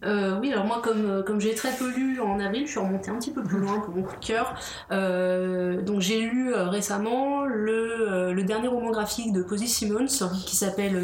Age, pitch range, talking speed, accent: 30-49, 185-230 Hz, 205 wpm, French